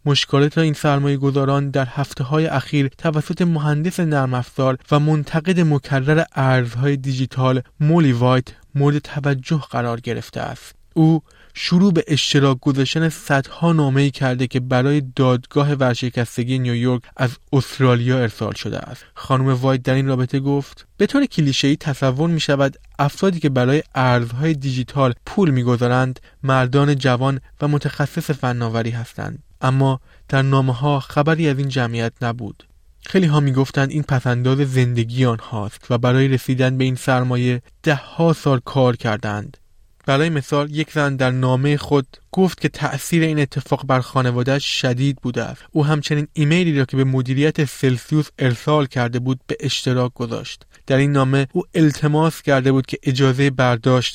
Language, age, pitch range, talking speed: Persian, 20-39, 125-145 Hz, 145 wpm